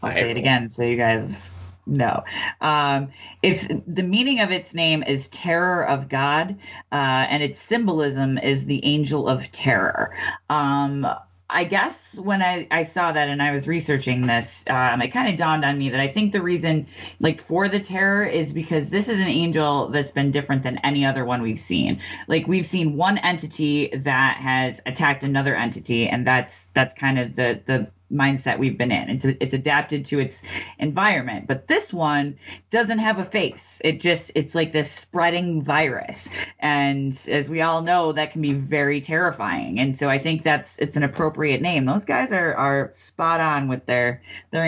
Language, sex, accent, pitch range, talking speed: English, female, American, 135-170 Hz, 190 wpm